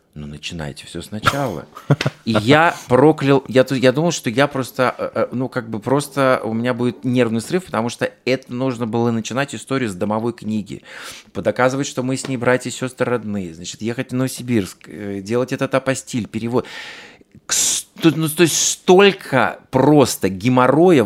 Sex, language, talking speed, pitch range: male, Russian, 160 wpm, 110-130 Hz